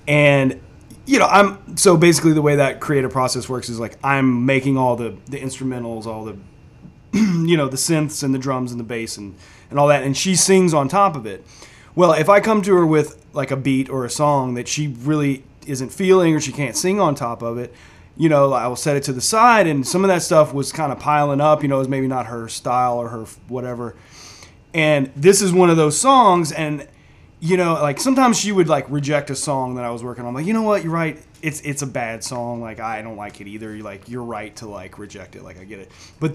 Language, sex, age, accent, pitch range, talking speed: English, male, 30-49, American, 125-155 Hz, 250 wpm